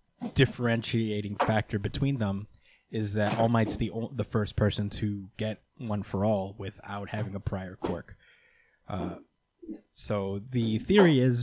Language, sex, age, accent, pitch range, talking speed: English, male, 20-39, American, 100-115 Hz, 140 wpm